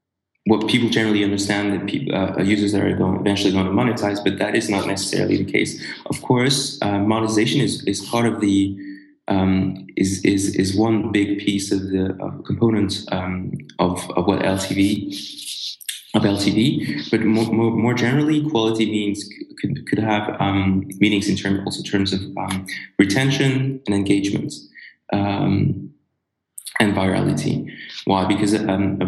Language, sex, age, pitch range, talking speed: English, male, 20-39, 95-105 Hz, 155 wpm